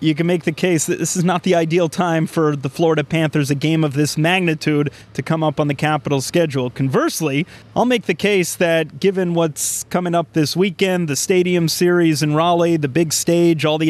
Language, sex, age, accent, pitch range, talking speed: English, male, 30-49, American, 150-175 Hz, 215 wpm